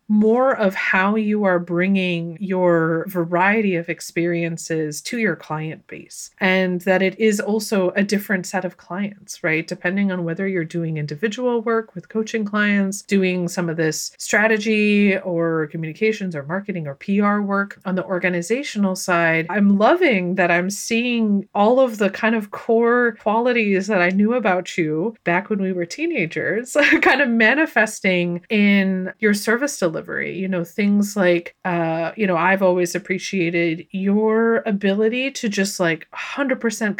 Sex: female